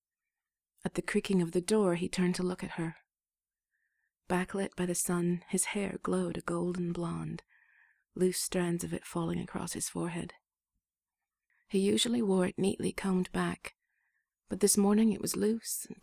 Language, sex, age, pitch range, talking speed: English, female, 30-49, 175-210 Hz, 165 wpm